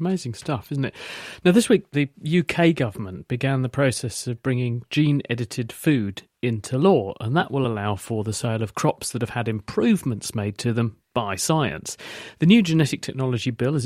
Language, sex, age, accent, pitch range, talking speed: English, male, 40-59, British, 115-145 Hz, 190 wpm